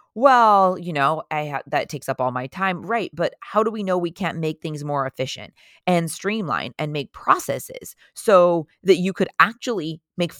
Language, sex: English, female